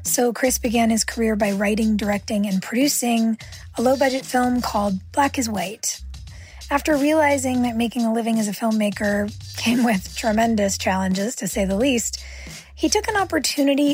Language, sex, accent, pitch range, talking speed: English, female, American, 200-255 Hz, 165 wpm